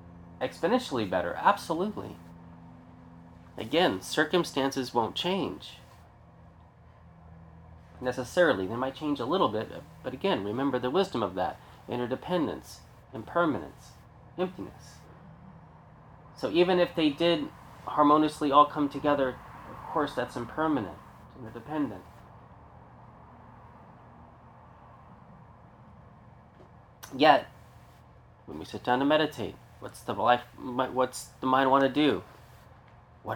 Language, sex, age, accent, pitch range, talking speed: English, male, 30-49, American, 100-135 Hz, 100 wpm